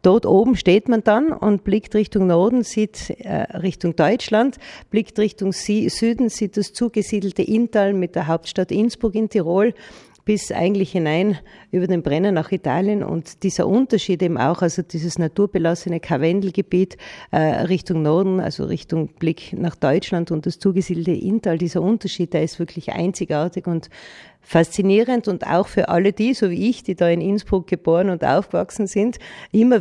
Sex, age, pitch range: female, 40-59, 175-210 Hz